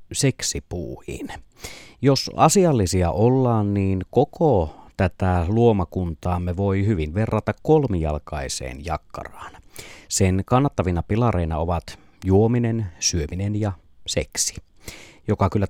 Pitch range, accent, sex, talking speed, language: 85-110 Hz, native, male, 90 wpm, Finnish